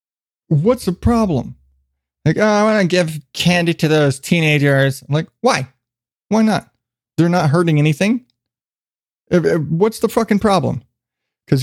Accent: American